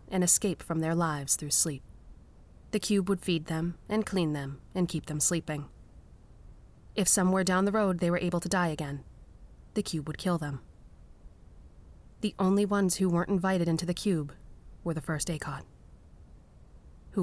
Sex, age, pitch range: female, 30-49, 110-180 Hz